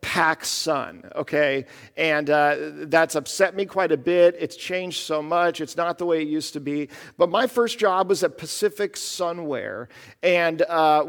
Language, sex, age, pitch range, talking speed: English, male, 50-69, 150-195 Hz, 180 wpm